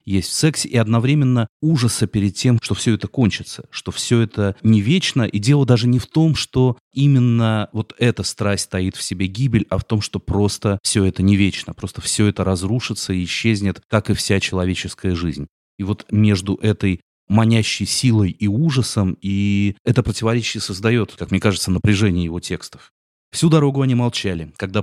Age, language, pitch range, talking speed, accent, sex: 30-49, Russian, 90-115 Hz, 180 wpm, native, male